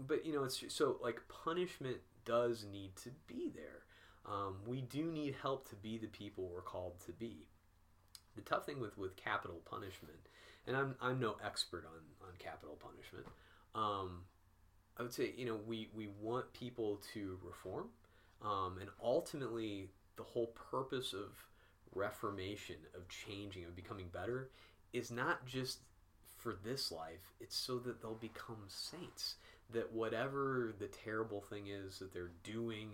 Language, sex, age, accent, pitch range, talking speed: English, male, 30-49, American, 90-115 Hz, 160 wpm